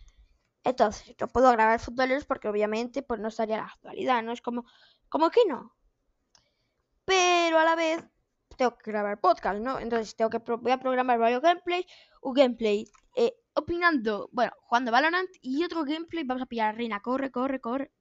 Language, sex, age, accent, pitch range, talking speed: Spanish, female, 10-29, Spanish, 215-285 Hz, 185 wpm